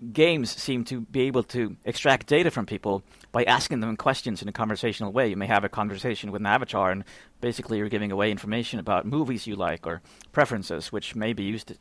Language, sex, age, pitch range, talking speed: English, male, 30-49, 100-125 Hz, 215 wpm